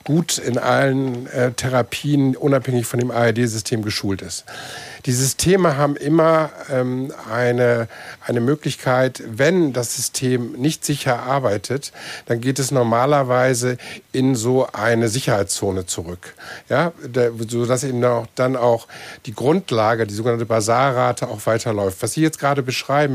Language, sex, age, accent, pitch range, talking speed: German, male, 50-69, German, 120-145 Hz, 135 wpm